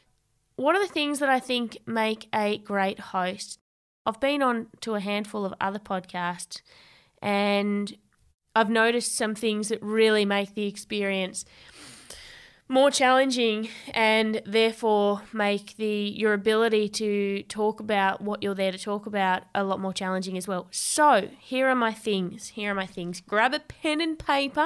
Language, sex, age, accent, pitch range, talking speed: English, female, 20-39, Australian, 195-230 Hz, 165 wpm